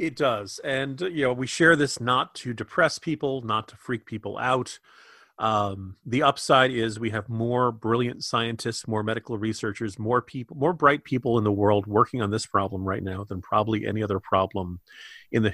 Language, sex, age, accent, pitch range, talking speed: English, male, 40-59, American, 105-125 Hz, 195 wpm